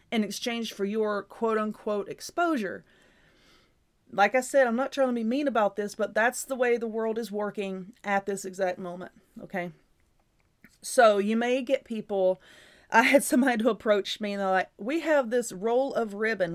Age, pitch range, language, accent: 30-49, 200-245 Hz, English, American